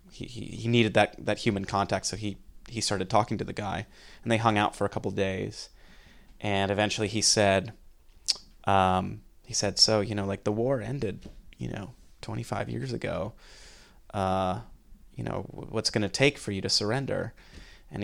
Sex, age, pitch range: male, 30-49, 100-115 Hz